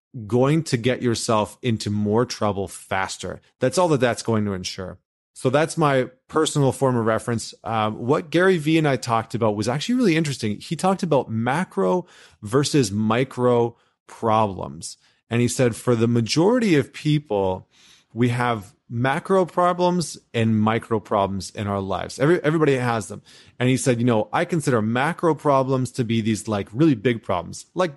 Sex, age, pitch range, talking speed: male, 30-49, 110-140 Hz, 170 wpm